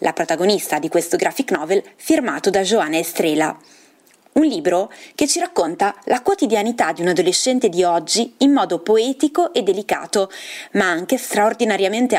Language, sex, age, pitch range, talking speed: Italian, female, 20-39, 180-265 Hz, 150 wpm